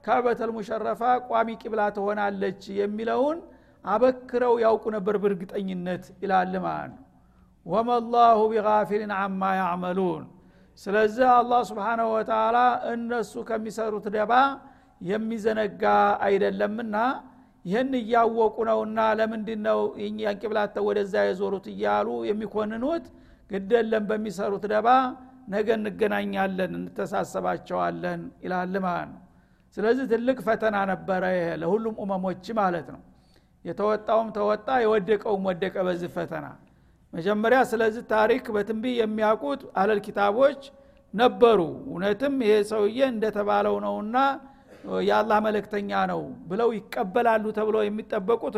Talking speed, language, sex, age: 95 wpm, Amharic, male, 60-79